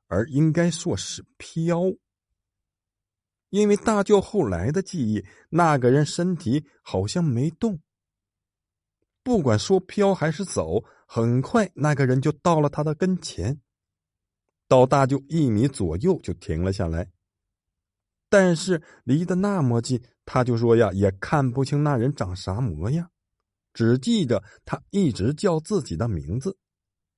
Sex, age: male, 50-69